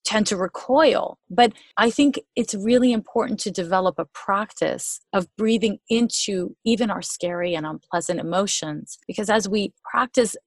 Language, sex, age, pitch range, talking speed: English, female, 30-49, 185-235 Hz, 150 wpm